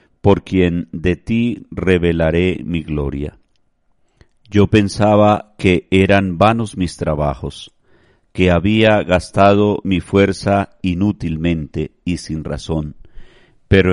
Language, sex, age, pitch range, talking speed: Spanish, male, 50-69, 85-100 Hz, 105 wpm